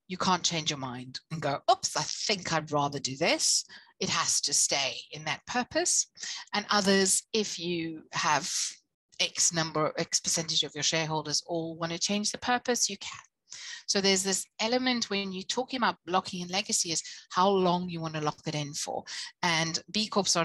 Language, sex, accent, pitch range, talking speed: English, female, British, 155-205 Hz, 195 wpm